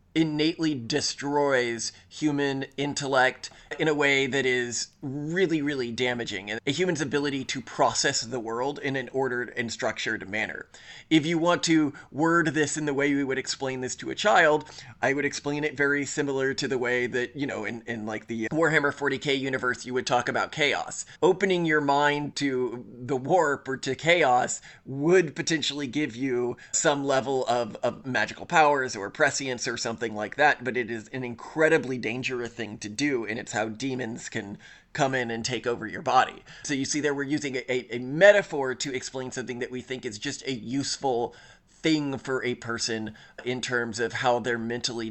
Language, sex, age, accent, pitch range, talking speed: English, male, 20-39, American, 120-145 Hz, 185 wpm